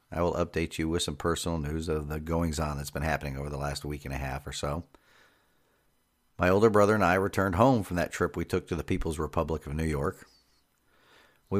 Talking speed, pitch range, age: 220 wpm, 75-95 Hz, 50-69